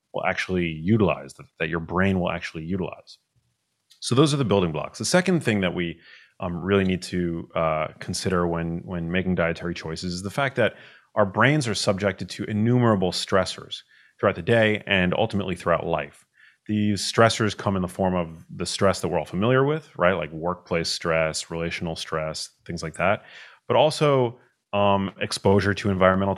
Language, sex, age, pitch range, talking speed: English, male, 30-49, 85-105 Hz, 175 wpm